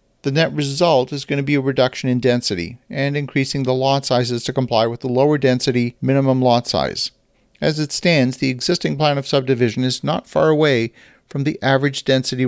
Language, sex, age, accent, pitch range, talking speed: English, male, 40-59, American, 125-145 Hz, 195 wpm